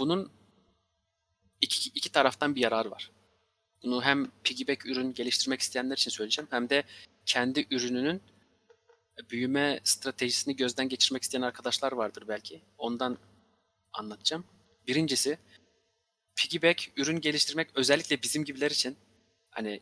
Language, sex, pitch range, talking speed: Turkish, male, 115-150 Hz, 115 wpm